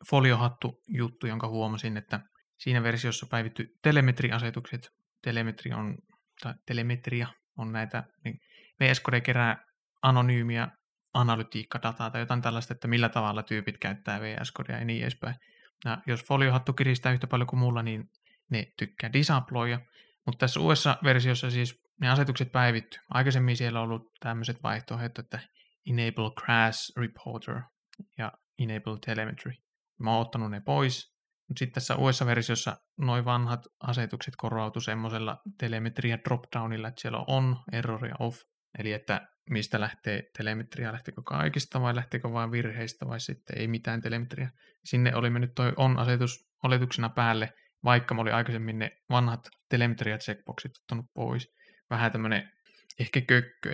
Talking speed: 140 wpm